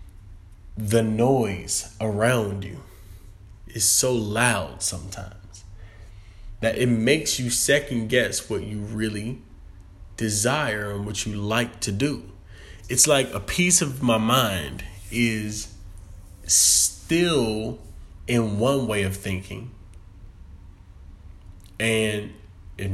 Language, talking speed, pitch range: English, 105 wpm, 90-105 Hz